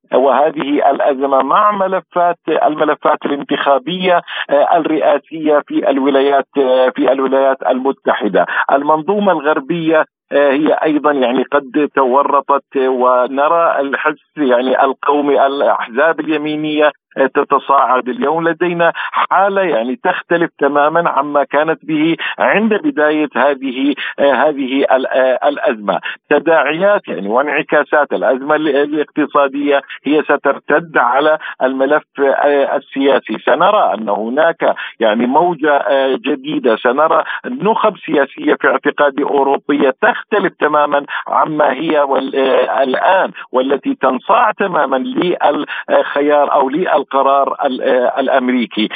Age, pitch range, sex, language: 50-69, 135-160 Hz, male, Arabic